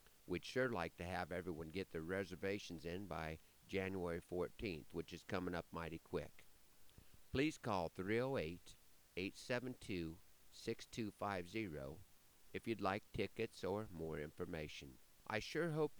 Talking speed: 120 wpm